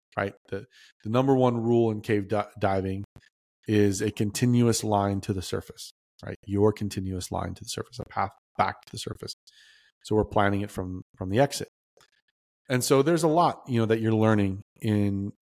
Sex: male